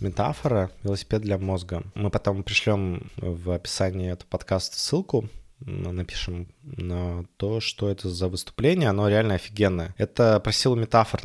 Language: Russian